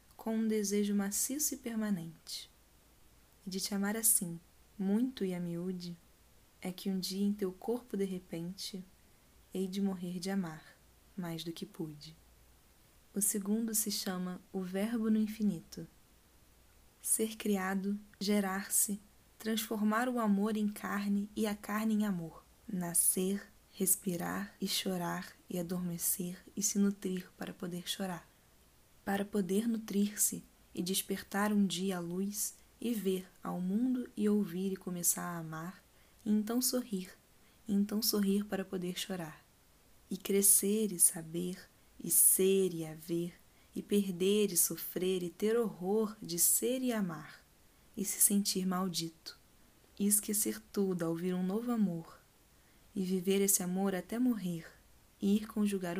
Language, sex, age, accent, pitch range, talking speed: Portuguese, female, 10-29, Brazilian, 180-210 Hz, 145 wpm